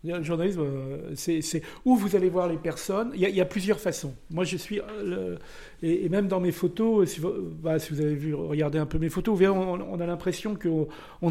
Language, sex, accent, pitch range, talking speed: French, male, French, 150-190 Hz, 235 wpm